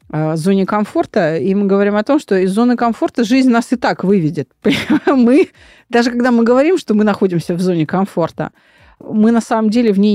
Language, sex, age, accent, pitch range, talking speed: Russian, female, 30-49, native, 175-230 Hz, 195 wpm